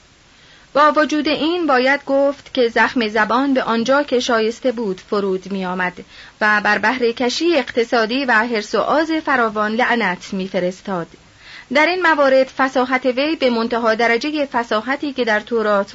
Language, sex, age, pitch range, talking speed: Persian, female, 30-49, 220-275 Hz, 140 wpm